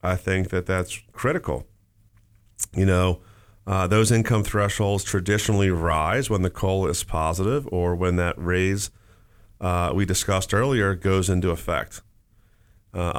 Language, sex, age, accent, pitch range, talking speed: English, male, 40-59, American, 90-105 Hz, 135 wpm